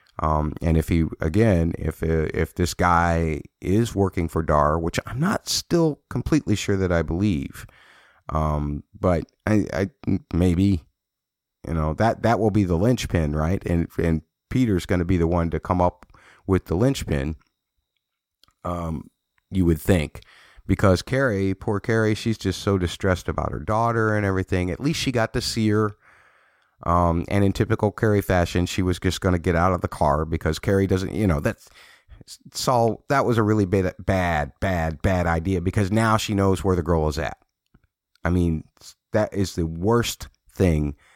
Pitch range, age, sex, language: 80-105 Hz, 30-49, male, English